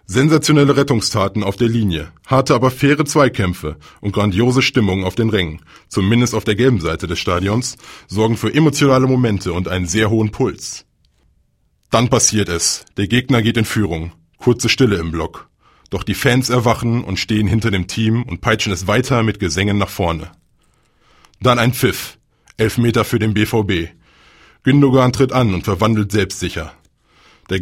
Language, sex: German, male